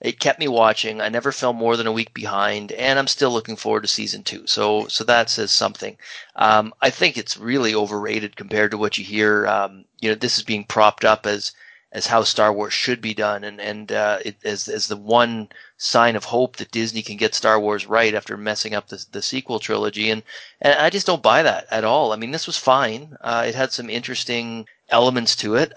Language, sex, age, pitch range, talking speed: English, male, 30-49, 105-120 Hz, 230 wpm